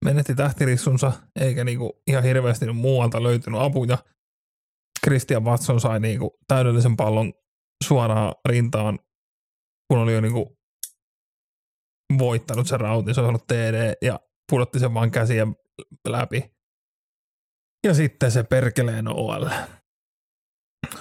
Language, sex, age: Finnish, male, 30-49